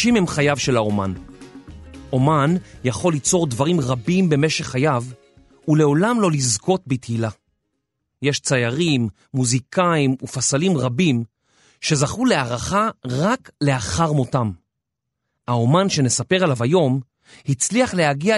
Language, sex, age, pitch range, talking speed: Hebrew, male, 40-59, 125-180 Hz, 105 wpm